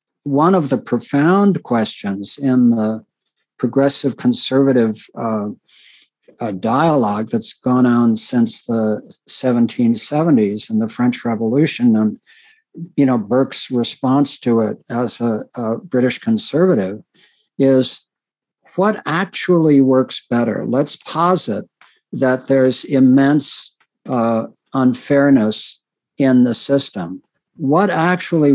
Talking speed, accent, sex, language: 105 wpm, American, male, English